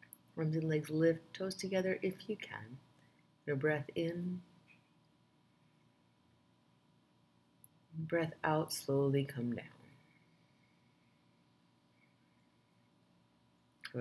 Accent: American